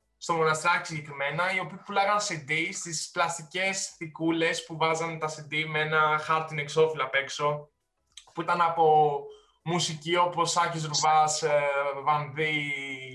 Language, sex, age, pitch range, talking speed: Greek, male, 20-39, 150-190 Hz, 130 wpm